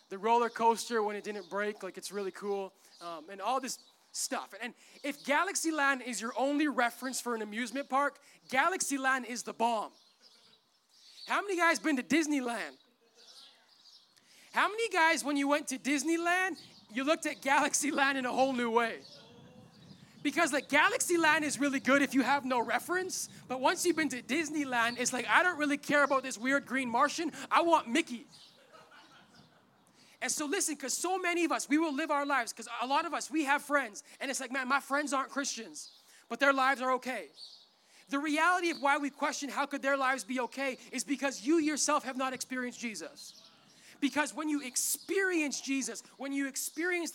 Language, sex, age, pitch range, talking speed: English, male, 20-39, 240-295 Hz, 190 wpm